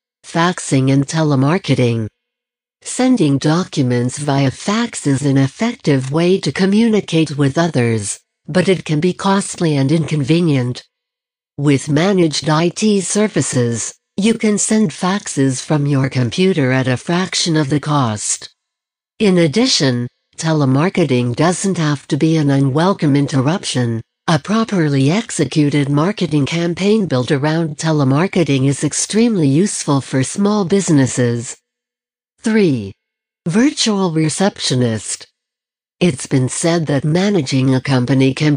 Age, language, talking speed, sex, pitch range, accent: 60-79, English, 115 wpm, female, 135-190 Hz, American